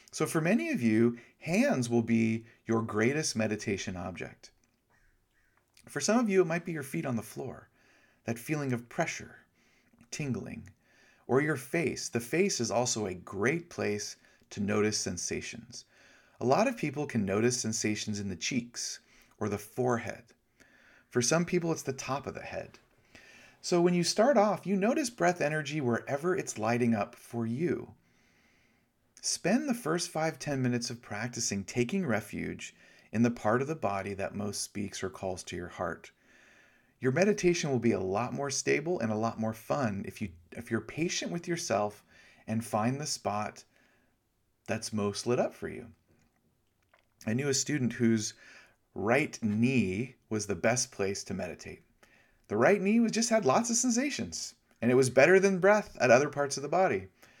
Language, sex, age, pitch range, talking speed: English, male, 40-59, 110-160 Hz, 170 wpm